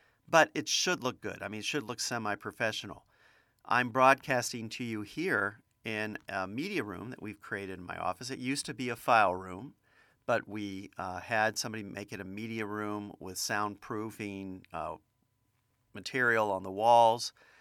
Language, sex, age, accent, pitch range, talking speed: English, male, 50-69, American, 100-125 Hz, 170 wpm